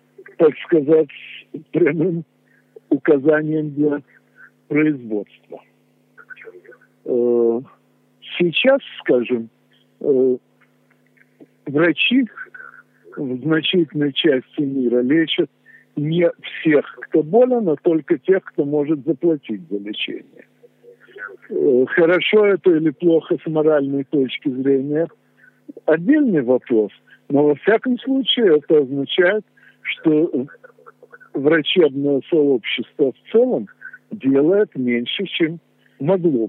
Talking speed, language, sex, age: 85 wpm, Russian, male, 60-79